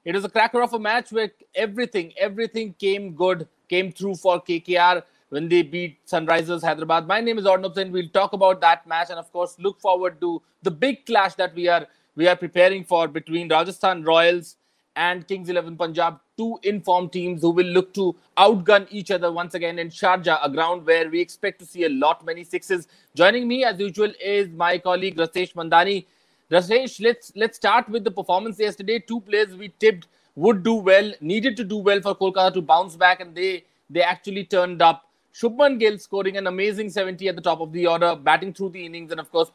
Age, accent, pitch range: 30-49, Indian, 170-200 Hz